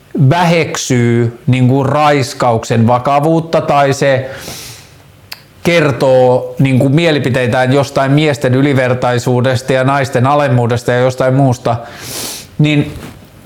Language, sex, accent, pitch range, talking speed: Finnish, male, native, 125-155 Hz, 75 wpm